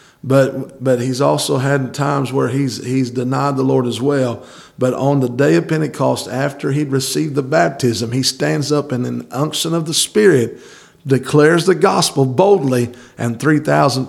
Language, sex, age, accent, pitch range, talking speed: English, male, 50-69, American, 125-155 Hz, 175 wpm